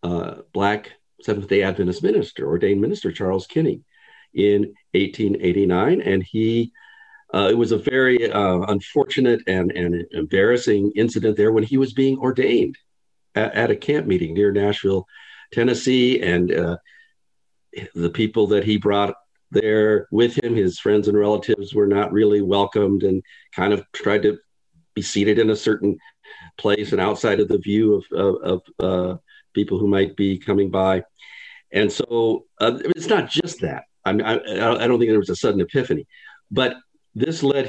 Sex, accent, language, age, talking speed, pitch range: male, American, English, 50-69, 165 wpm, 100-120 Hz